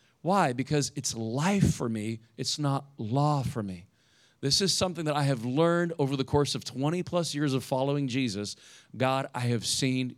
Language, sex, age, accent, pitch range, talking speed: English, male, 40-59, American, 125-160 Hz, 190 wpm